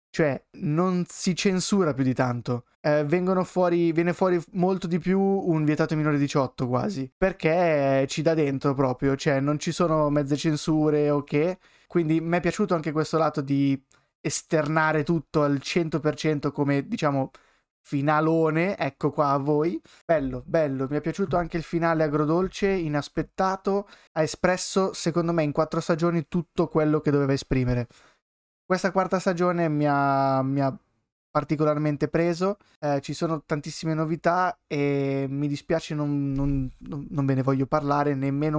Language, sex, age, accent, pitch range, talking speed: Italian, male, 20-39, native, 140-170 Hz, 150 wpm